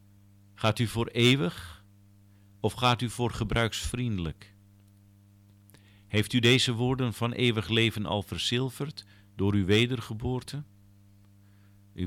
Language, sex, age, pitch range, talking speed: Dutch, male, 50-69, 100-110 Hz, 110 wpm